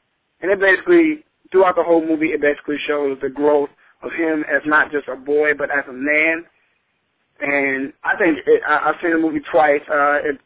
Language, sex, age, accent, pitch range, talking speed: English, male, 20-39, American, 140-160 Hz, 200 wpm